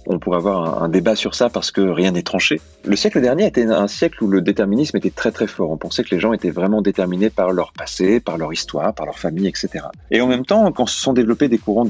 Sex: male